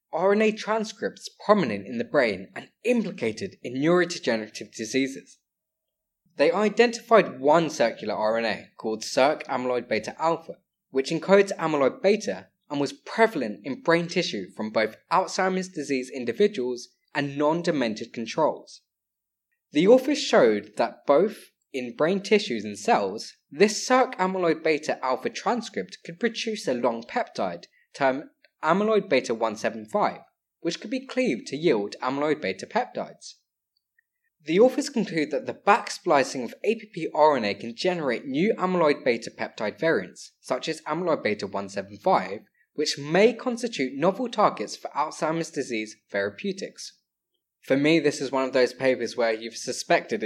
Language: English